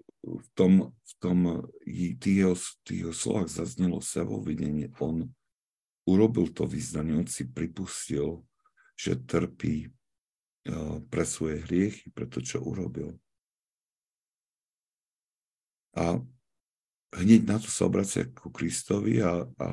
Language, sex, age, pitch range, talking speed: Slovak, male, 50-69, 80-95 Hz, 100 wpm